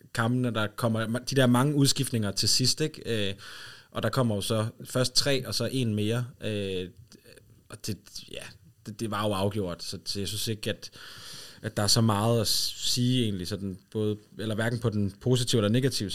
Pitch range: 105-130 Hz